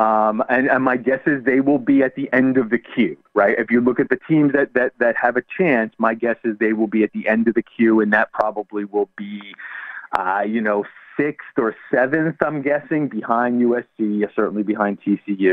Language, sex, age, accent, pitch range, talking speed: English, male, 40-59, American, 115-155 Hz, 225 wpm